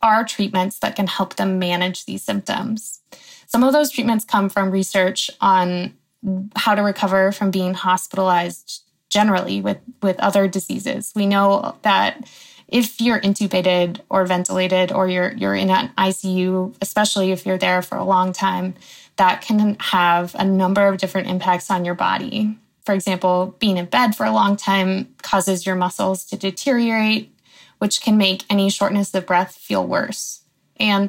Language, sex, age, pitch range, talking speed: English, female, 20-39, 185-210 Hz, 165 wpm